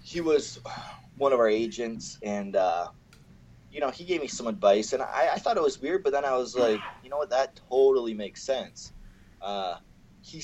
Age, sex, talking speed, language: 20-39, male, 205 wpm, English